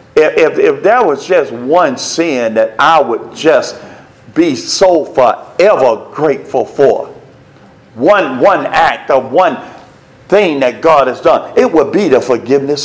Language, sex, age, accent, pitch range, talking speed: English, male, 50-69, American, 140-205 Hz, 150 wpm